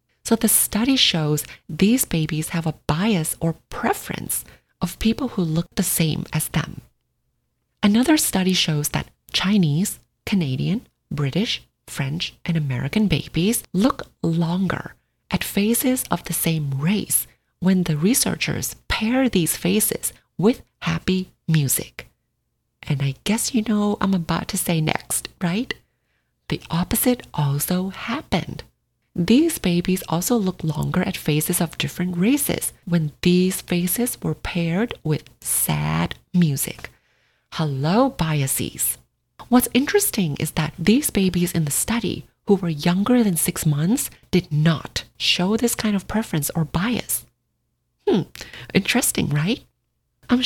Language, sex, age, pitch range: English, female, 30-49, 155-215 Hz